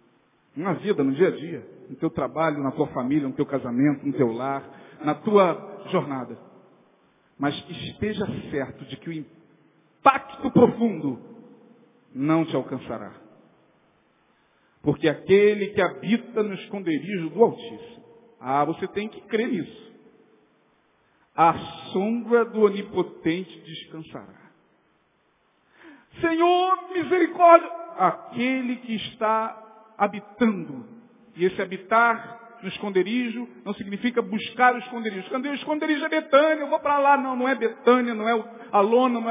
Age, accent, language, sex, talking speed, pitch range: 50-69, Brazilian, Portuguese, male, 125 wpm, 165-245 Hz